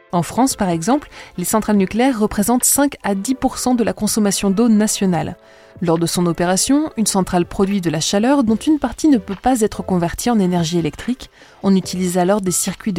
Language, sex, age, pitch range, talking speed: French, female, 20-39, 175-225 Hz, 195 wpm